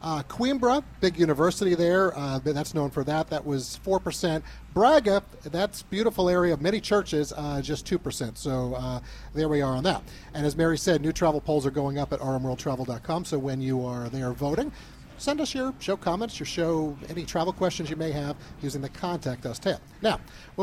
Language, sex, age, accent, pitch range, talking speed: English, male, 40-59, American, 140-190 Hz, 200 wpm